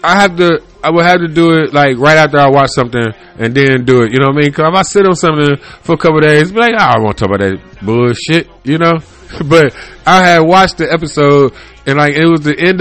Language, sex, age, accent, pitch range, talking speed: English, male, 20-39, American, 135-175 Hz, 290 wpm